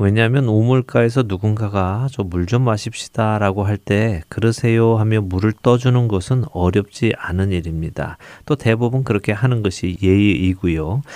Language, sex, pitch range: Korean, male, 95-120 Hz